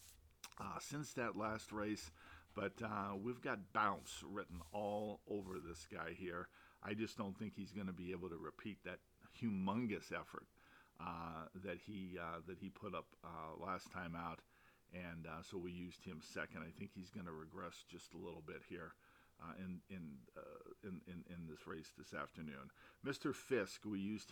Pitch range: 90-100 Hz